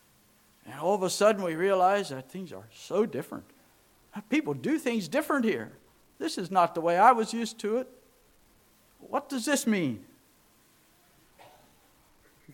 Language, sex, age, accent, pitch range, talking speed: English, male, 60-79, American, 180-240 Hz, 155 wpm